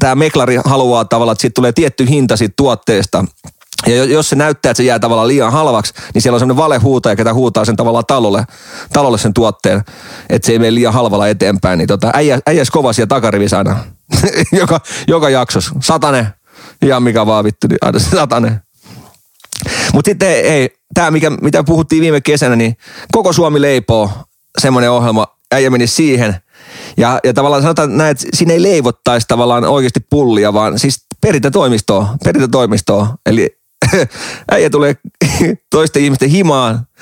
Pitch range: 115-145 Hz